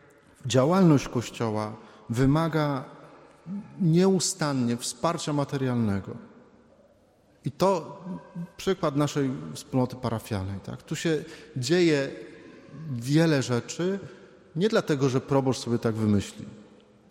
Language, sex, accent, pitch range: Polish, male, native, 125-155 Hz